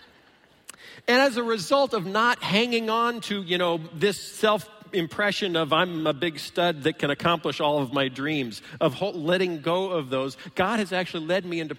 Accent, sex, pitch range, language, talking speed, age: American, male, 140-180 Hz, English, 185 wpm, 40-59